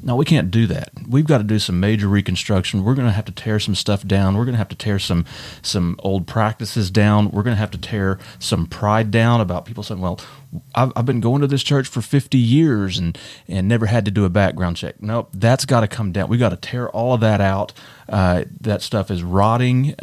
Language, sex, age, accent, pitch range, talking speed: English, male, 30-49, American, 95-120 Hz, 250 wpm